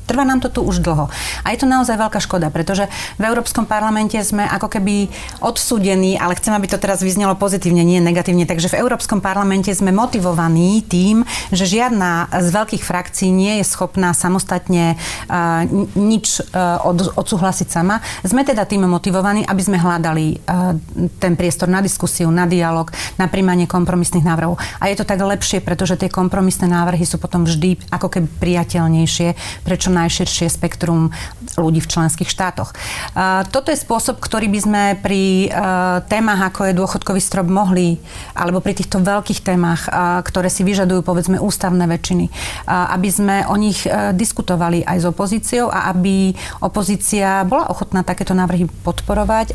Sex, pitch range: female, 175-200 Hz